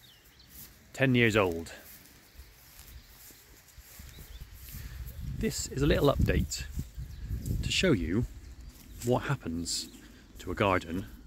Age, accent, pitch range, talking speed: 30-49, British, 90-120 Hz, 85 wpm